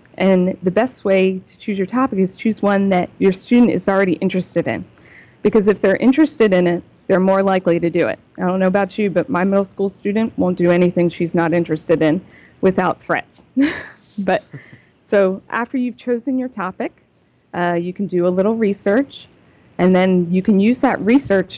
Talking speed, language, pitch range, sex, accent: 195 wpm, English, 180-215 Hz, female, American